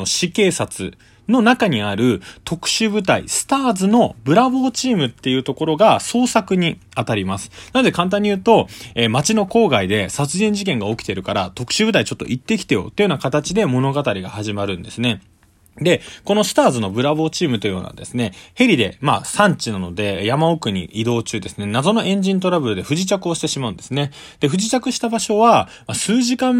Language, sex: Japanese, male